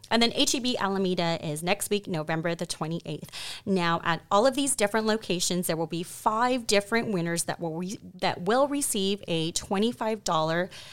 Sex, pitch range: female, 165-205 Hz